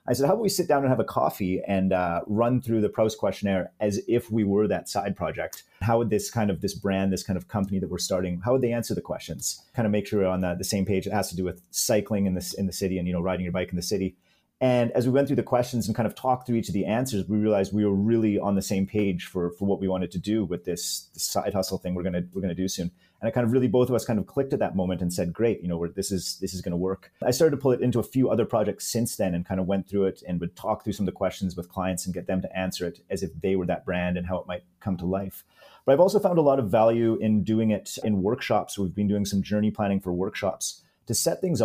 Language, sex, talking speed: English, male, 315 wpm